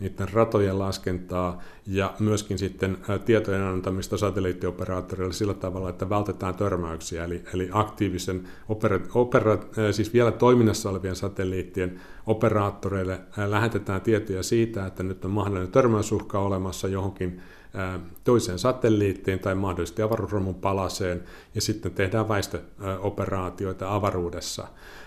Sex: male